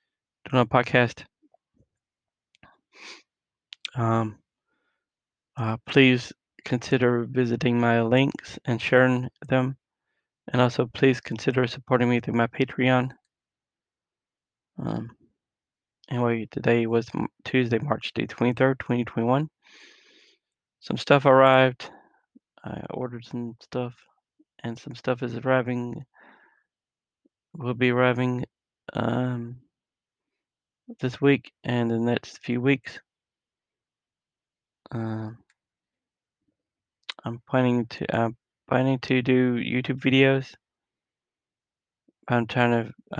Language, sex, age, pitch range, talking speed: English, male, 20-39, 120-130 Hz, 90 wpm